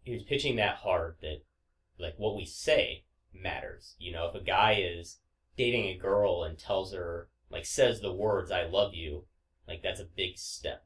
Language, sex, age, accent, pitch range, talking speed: English, male, 30-49, American, 85-105 Hz, 195 wpm